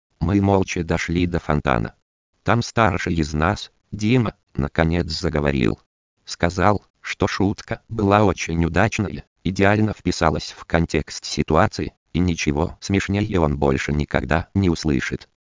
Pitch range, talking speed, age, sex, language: 80-100 Hz, 120 wpm, 50-69, male, Russian